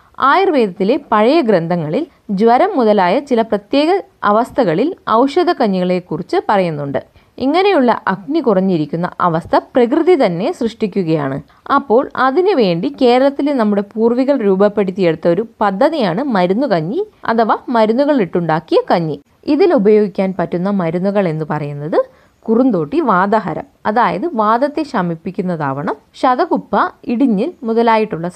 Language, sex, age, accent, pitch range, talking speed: Malayalam, female, 20-39, native, 185-275 Hz, 95 wpm